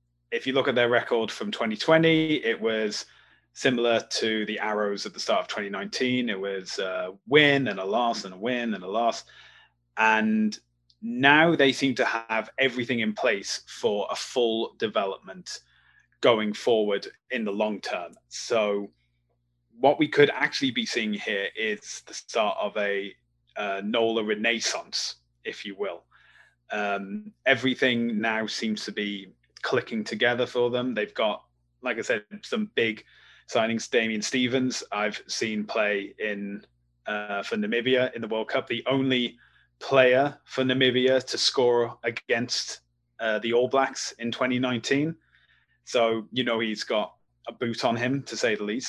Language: English